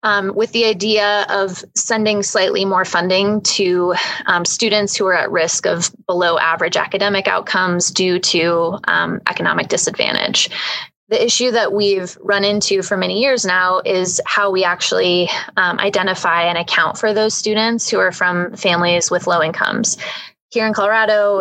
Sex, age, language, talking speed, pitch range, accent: female, 20-39, English, 160 wpm, 180-205 Hz, American